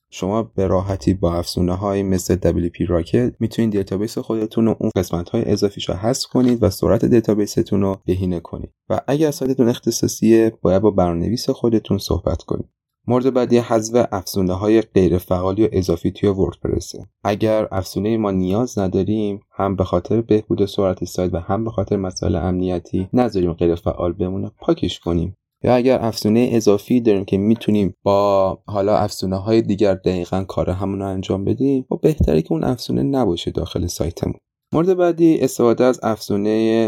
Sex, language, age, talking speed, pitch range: male, Persian, 30-49, 160 wpm, 95-115 Hz